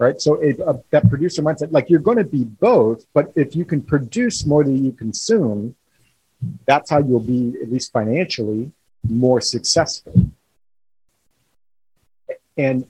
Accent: American